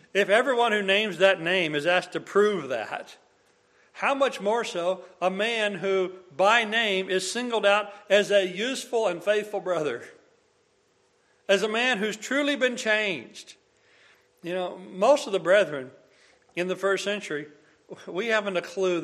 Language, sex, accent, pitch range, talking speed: English, male, American, 160-210 Hz, 160 wpm